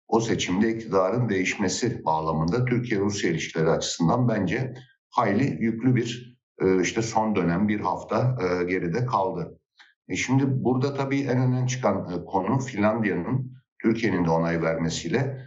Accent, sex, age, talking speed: native, male, 60-79, 120 wpm